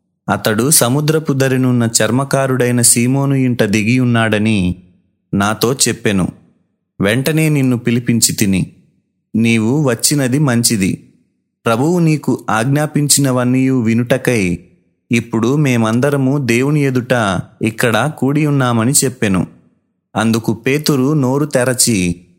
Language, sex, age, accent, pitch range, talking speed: Telugu, male, 30-49, native, 110-140 Hz, 80 wpm